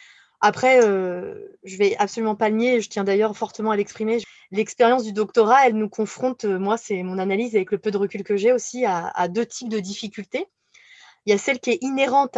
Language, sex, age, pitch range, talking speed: French, female, 20-39, 205-245 Hz, 225 wpm